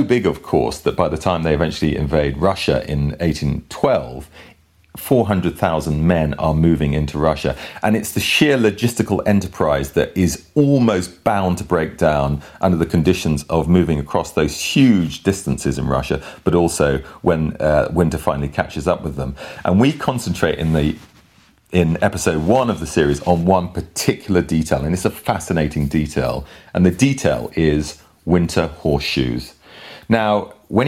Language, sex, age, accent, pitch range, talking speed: English, male, 40-59, British, 75-95 Hz, 155 wpm